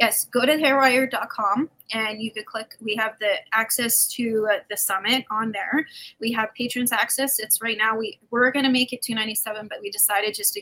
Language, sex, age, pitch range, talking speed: English, female, 20-39, 205-240 Hz, 200 wpm